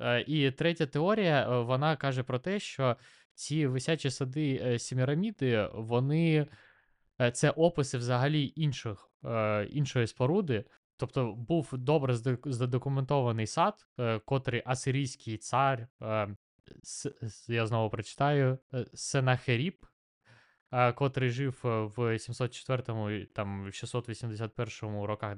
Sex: male